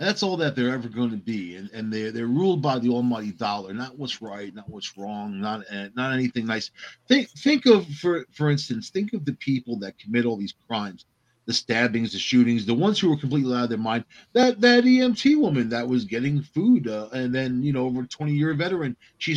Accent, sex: American, male